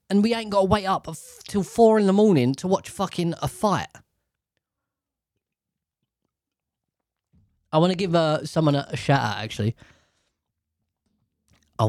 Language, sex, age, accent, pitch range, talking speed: English, male, 20-39, British, 100-140 Hz, 140 wpm